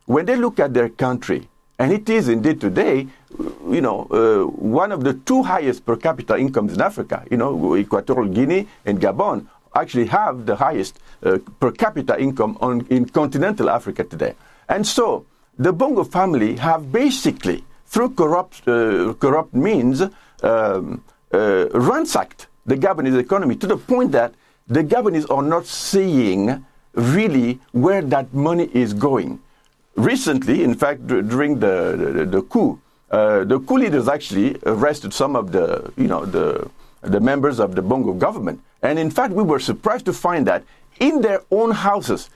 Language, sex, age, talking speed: English, male, 50-69, 165 wpm